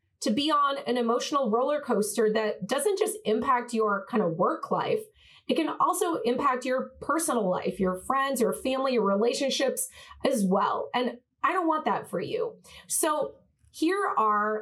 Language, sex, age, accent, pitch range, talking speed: English, female, 30-49, American, 215-275 Hz, 170 wpm